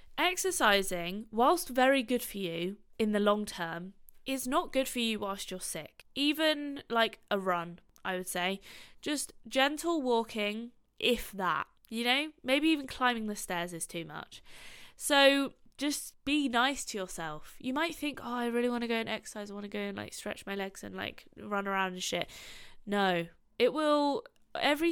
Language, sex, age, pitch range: English, female, 20-39, 195-275 Hz